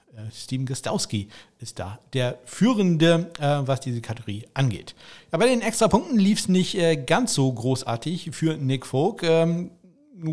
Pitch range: 125-165 Hz